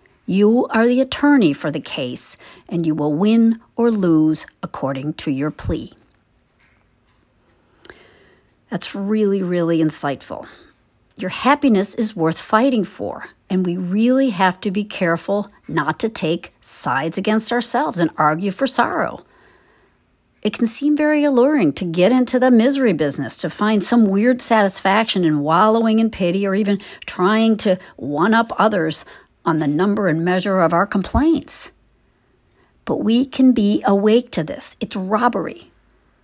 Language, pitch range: English, 175-240 Hz